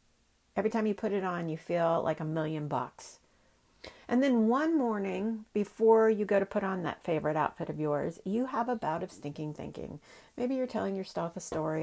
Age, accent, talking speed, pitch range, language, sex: 50-69, American, 205 wpm, 165-225 Hz, English, female